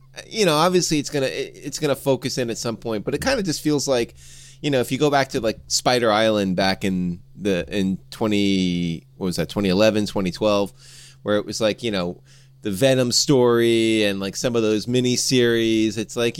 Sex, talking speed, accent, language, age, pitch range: male, 210 wpm, American, English, 30-49, 105-140 Hz